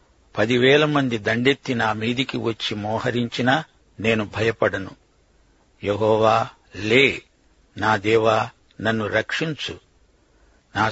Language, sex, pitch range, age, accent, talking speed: Telugu, male, 110-135 Hz, 60-79, native, 90 wpm